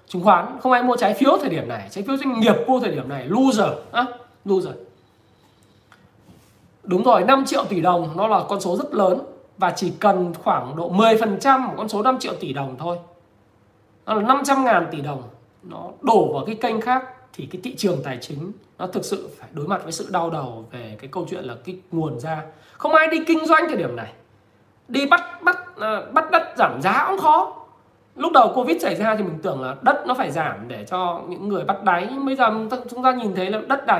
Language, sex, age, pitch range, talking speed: Vietnamese, male, 20-39, 175-260 Hz, 230 wpm